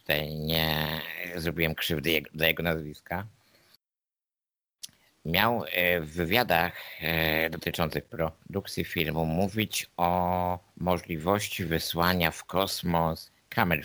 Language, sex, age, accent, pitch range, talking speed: Polish, male, 50-69, native, 80-95 Hz, 85 wpm